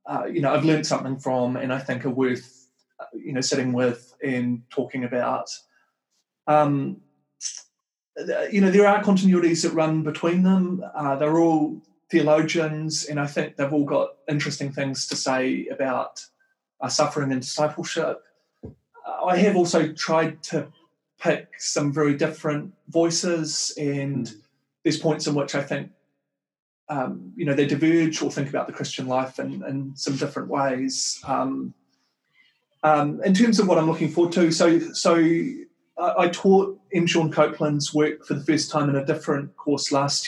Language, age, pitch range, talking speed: English, 30-49, 135-165 Hz, 160 wpm